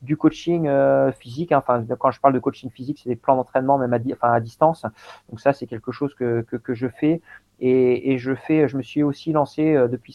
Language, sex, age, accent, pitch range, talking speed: French, male, 40-59, French, 120-140 Hz, 255 wpm